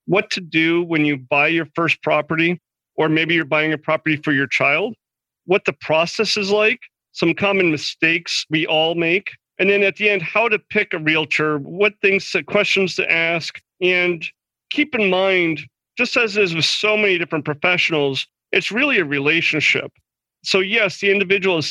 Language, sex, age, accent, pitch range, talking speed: English, male, 40-59, American, 150-190 Hz, 185 wpm